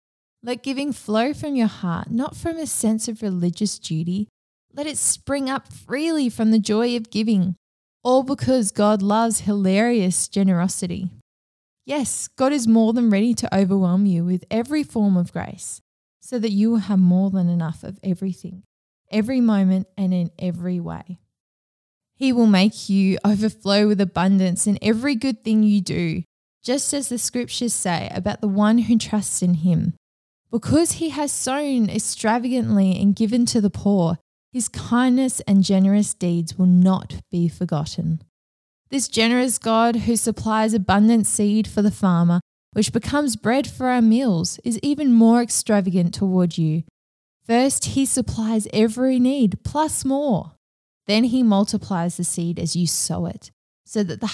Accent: Australian